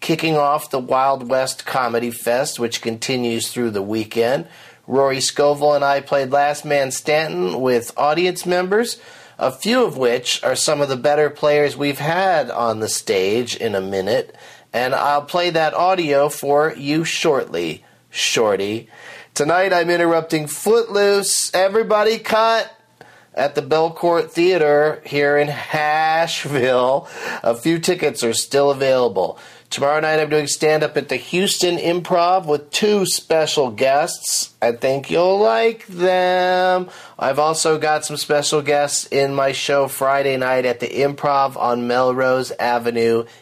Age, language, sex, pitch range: 40-59, English, male, 120-160 Hz